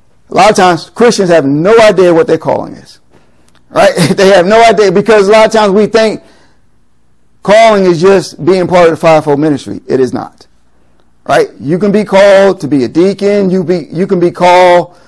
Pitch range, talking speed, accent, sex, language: 145-200 Hz, 205 wpm, American, male, English